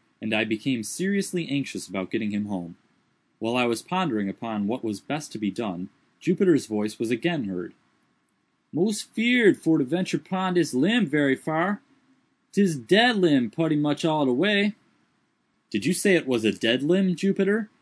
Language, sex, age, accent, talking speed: English, male, 30-49, American, 175 wpm